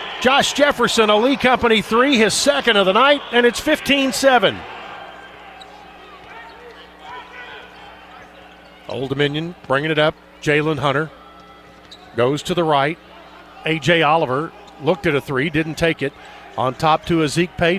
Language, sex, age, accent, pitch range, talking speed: English, male, 50-69, American, 155-210 Hz, 130 wpm